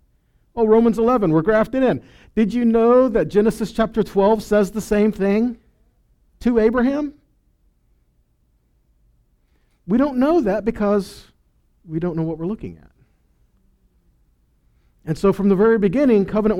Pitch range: 145-225 Hz